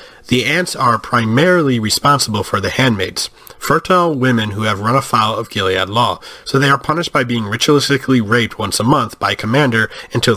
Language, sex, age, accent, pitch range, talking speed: English, male, 40-59, American, 105-135 Hz, 185 wpm